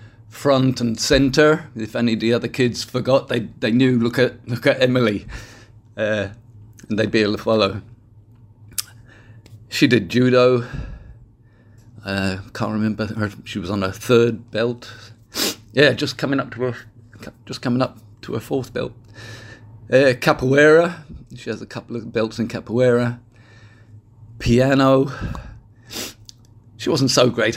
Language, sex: English, male